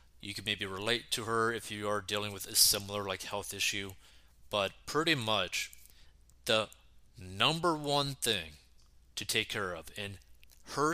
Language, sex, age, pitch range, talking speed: English, male, 20-39, 75-110 Hz, 160 wpm